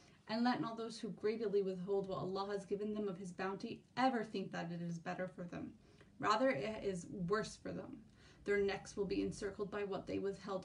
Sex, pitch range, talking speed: female, 190-210 Hz, 215 wpm